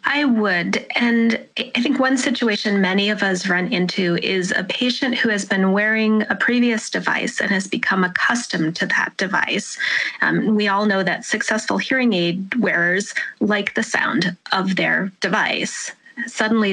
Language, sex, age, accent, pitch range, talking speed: English, female, 30-49, American, 180-225 Hz, 160 wpm